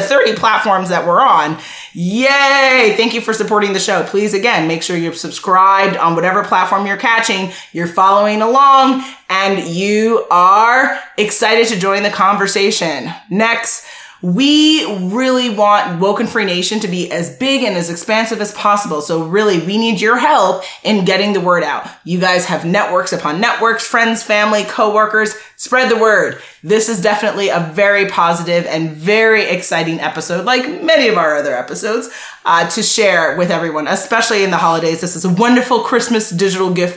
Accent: American